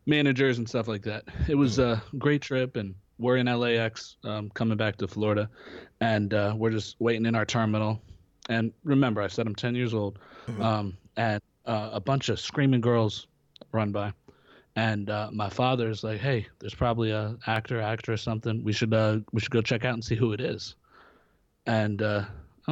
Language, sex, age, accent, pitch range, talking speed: English, male, 20-39, American, 105-125 Hz, 195 wpm